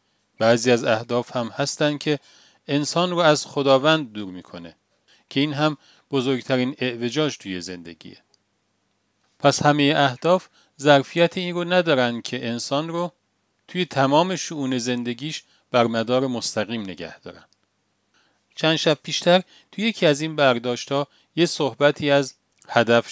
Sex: male